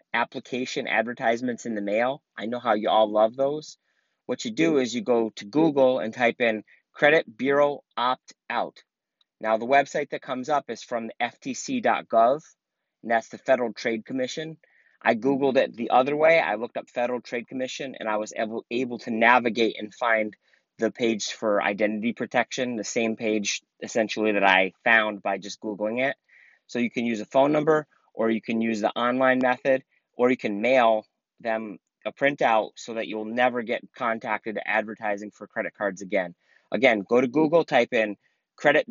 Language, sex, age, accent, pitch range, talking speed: English, male, 30-49, American, 110-140 Hz, 180 wpm